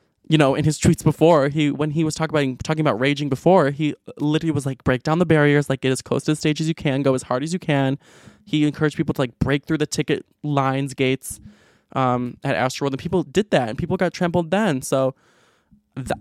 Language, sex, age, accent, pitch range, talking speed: English, male, 20-39, American, 125-150 Hz, 240 wpm